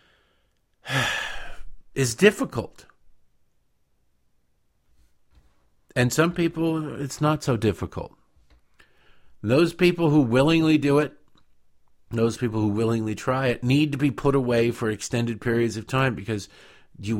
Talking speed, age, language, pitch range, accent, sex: 115 wpm, 50-69, English, 95-135 Hz, American, male